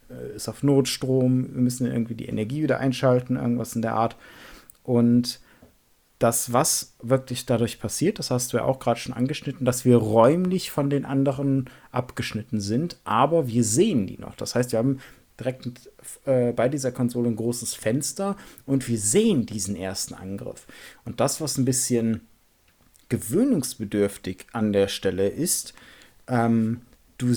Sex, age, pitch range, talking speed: male, 40-59, 120-145 Hz, 155 wpm